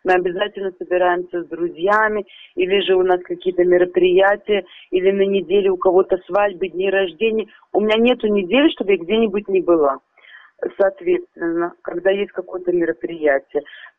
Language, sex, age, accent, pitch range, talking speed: Russian, female, 30-49, native, 180-220 Hz, 140 wpm